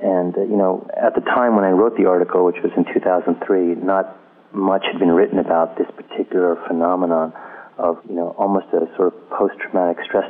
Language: English